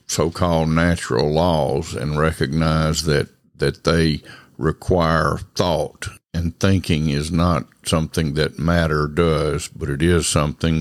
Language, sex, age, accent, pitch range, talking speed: English, male, 60-79, American, 80-95 Hz, 120 wpm